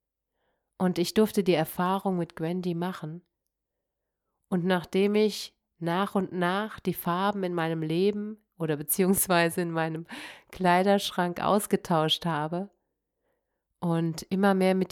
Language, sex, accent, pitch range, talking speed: German, female, German, 165-195 Hz, 120 wpm